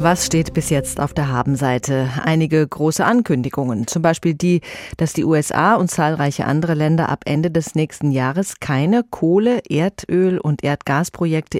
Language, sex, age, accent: German, female, 30-49, German